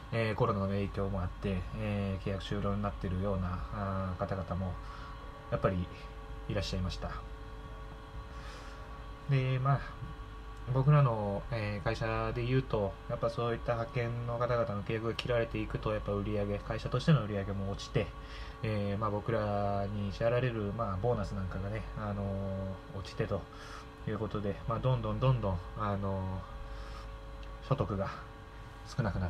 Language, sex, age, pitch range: Japanese, male, 20-39, 100-120 Hz